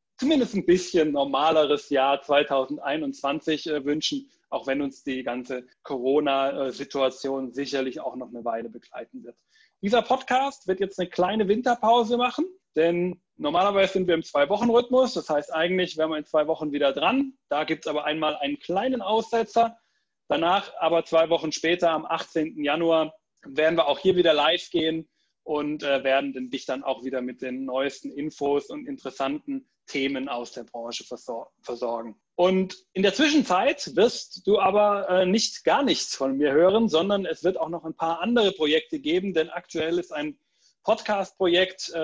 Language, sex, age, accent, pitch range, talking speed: German, male, 30-49, German, 140-195 Hz, 160 wpm